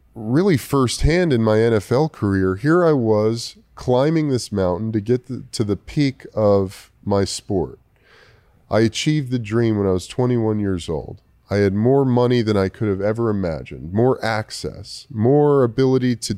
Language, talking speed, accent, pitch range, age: English, 165 wpm, American, 100-130 Hz, 30-49